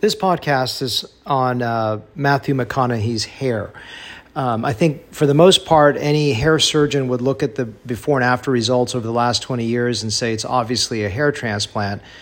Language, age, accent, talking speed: English, 40-59, American, 185 wpm